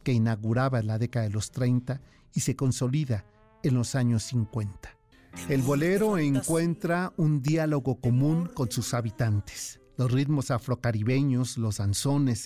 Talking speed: 140 wpm